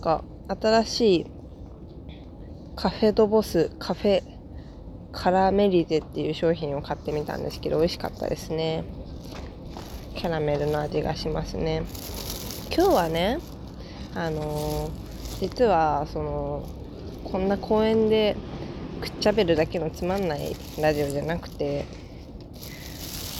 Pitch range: 145-210 Hz